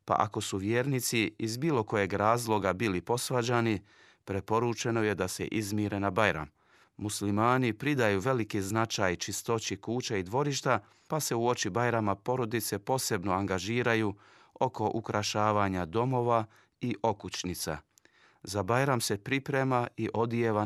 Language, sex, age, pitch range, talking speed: Croatian, male, 40-59, 100-115 Hz, 130 wpm